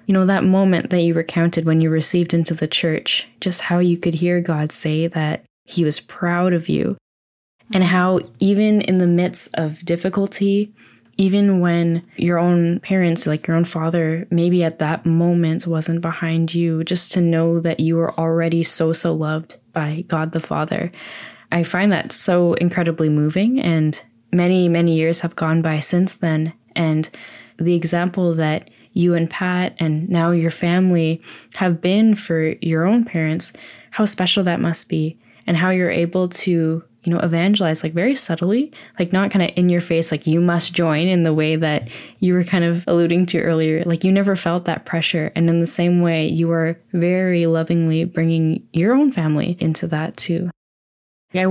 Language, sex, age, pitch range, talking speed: English, female, 10-29, 160-180 Hz, 185 wpm